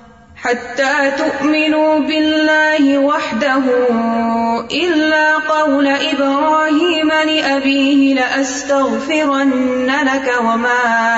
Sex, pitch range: female, 245-310 Hz